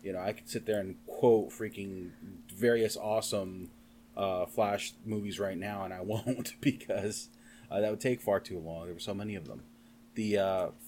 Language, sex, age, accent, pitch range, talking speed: English, male, 30-49, American, 100-120 Hz, 195 wpm